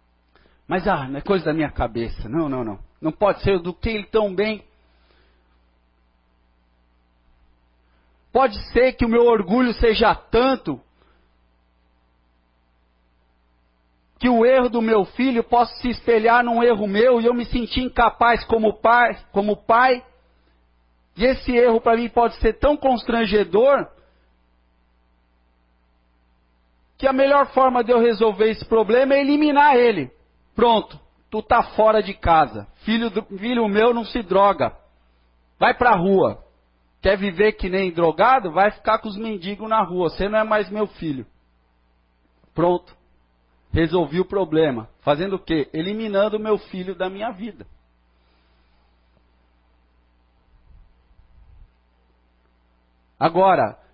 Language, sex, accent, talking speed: Portuguese, male, Brazilian, 130 wpm